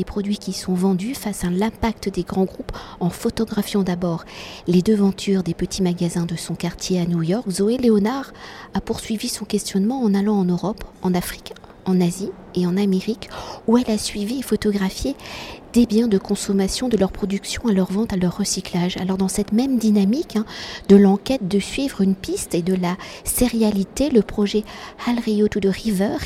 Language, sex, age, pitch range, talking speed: French, female, 50-69, 190-225 Hz, 190 wpm